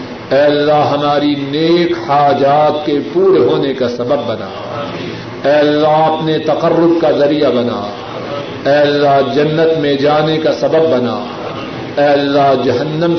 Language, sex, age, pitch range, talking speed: Urdu, male, 50-69, 135-150 Hz, 130 wpm